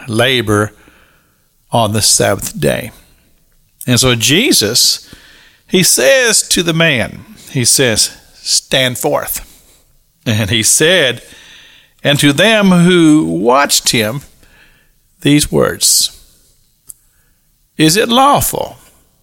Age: 50-69